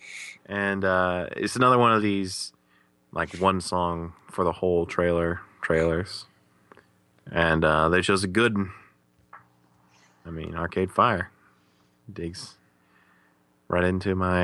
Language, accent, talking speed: English, American, 125 wpm